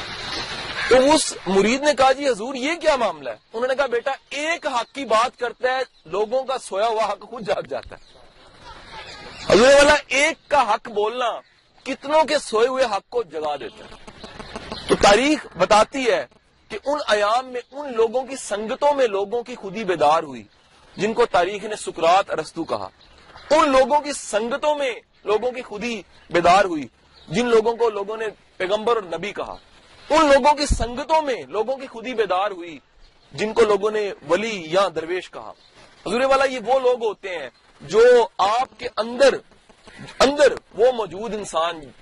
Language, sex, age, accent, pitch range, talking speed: English, male, 40-59, Indian, 210-280 Hz, 165 wpm